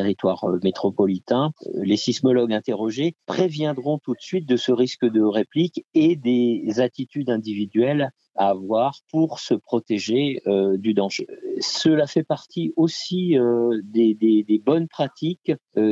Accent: French